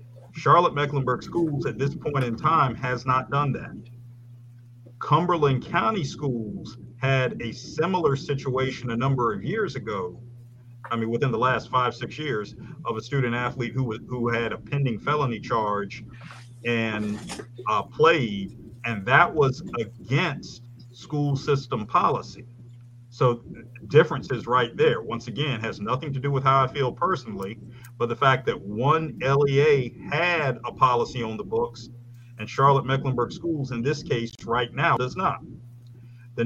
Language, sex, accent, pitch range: English, male, American, 120-145 Hz